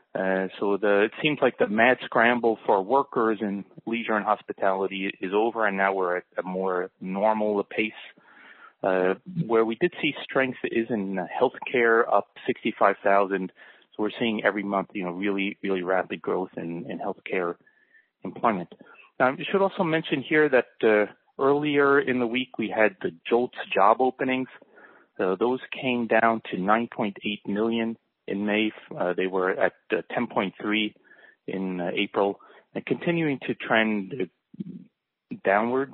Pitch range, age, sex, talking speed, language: 100-120 Hz, 30-49, male, 155 wpm, English